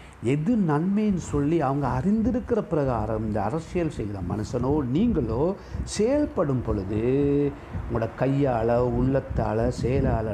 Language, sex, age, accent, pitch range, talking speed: Tamil, male, 60-79, native, 100-140 Hz, 105 wpm